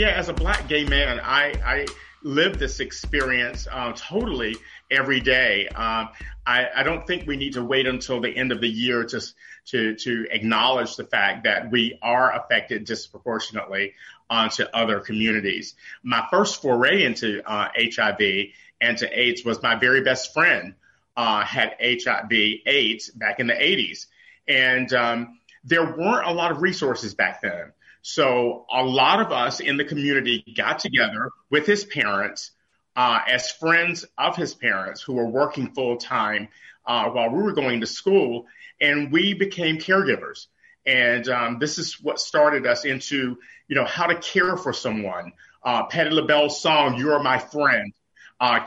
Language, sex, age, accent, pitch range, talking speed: English, male, 40-59, American, 120-155 Hz, 170 wpm